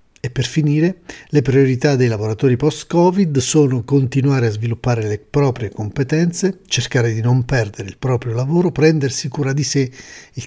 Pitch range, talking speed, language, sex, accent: 120-150 Hz, 155 wpm, Italian, male, native